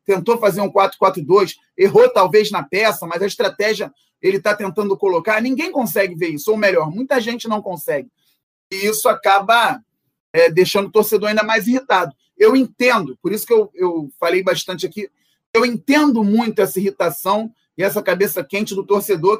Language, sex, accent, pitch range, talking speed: Portuguese, male, Brazilian, 190-235 Hz, 170 wpm